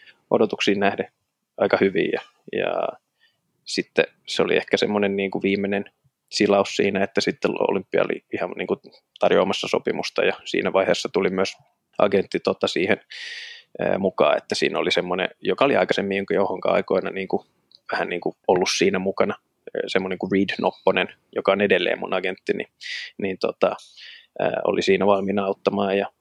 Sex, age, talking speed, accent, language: male, 20-39, 150 wpm, native, Finnish